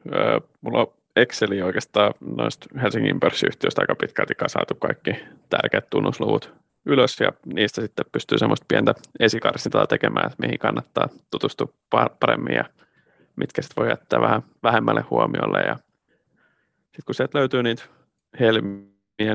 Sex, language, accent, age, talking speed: male, Finnish, native, 30-49, 130 wpm